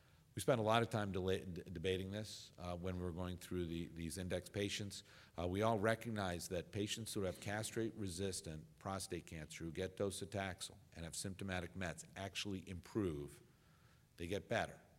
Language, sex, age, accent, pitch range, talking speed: English, male, 50-69, American, 85-105 Hz, 160 wpm